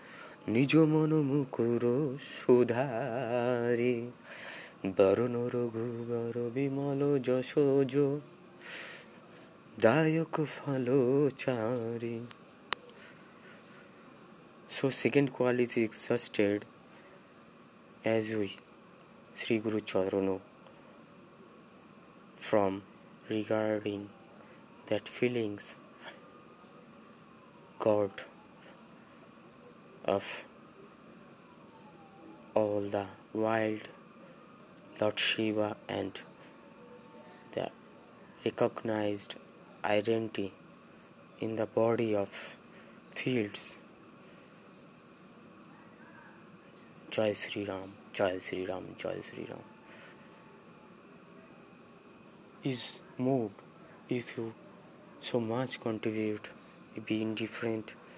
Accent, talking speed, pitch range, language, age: native, 50 wpm, 105-125 Hz, Bengali, 20-39